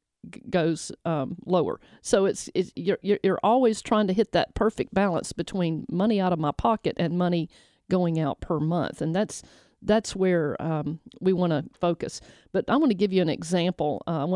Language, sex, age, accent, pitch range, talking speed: English, female, 50-69, American, 170-215 Hz, 190 wpm